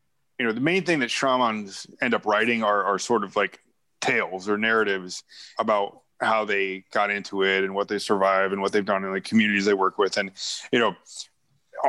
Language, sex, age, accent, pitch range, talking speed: English, male, 30-49, American, 100-125 Hz, 205 wpm